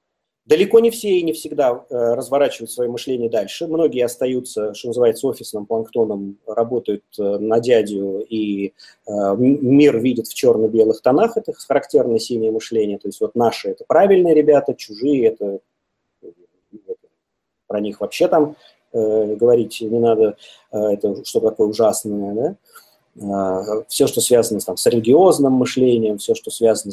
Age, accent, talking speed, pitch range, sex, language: 30-49, native, 140 wpm, 115-165 Hz, male, Russian